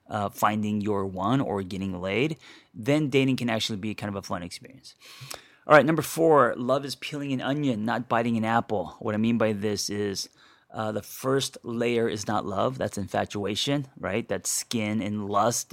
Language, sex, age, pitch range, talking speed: English, male, 30-49, 100-125 Hz, 190 wpm